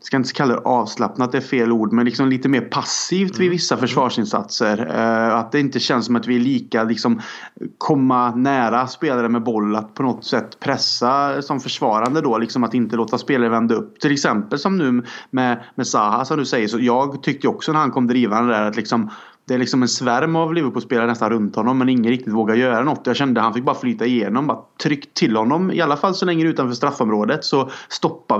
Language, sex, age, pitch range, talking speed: Swedish, male, 30-49, 120-150 Hz, 230 wpm